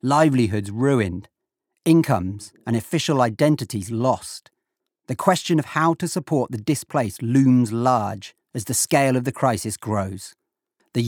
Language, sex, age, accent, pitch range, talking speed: English, male, 40-59, British, 110-140 Hz, 135 wpm